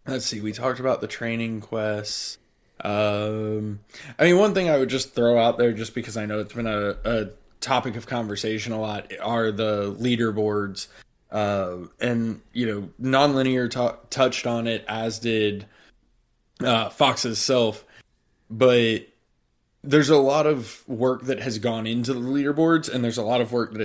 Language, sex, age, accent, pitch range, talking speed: English, male, 20-39, American, 110-130 Hz, 170 wpm